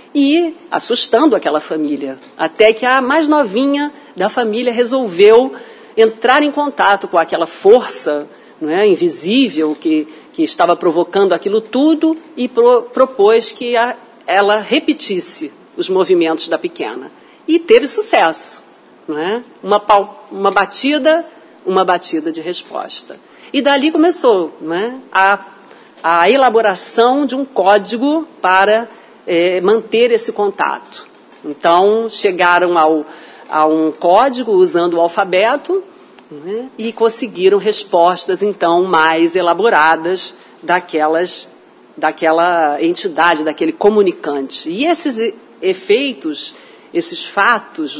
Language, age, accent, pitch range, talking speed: Portuguese, 50-69, Brazilian, 185-305 Hz, 100 wpm